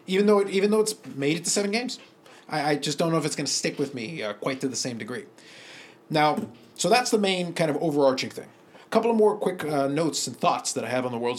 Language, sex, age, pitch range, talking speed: English, male, 30-49, 135-200 Hz, 280 wpm